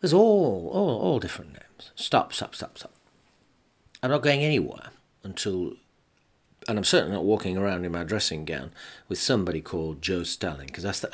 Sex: male